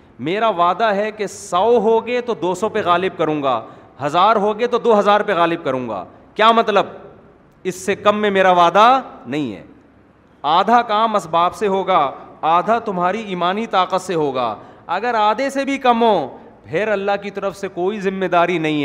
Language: Urdu